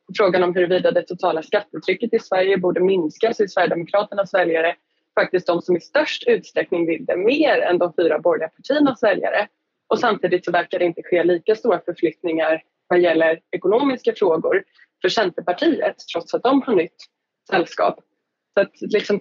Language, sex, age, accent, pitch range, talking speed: Swedish, female, 20-39, native, 165-225 Hz, 165 wpm